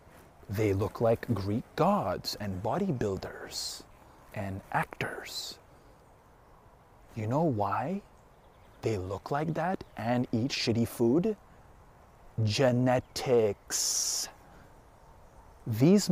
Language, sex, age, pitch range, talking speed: English, male, 30-49, 110-145 Hz, 80 wpm